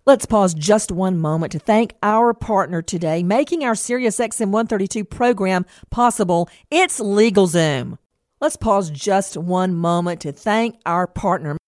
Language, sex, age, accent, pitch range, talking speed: English, female, 50-69, American, 185-245 Hz, 145 wpm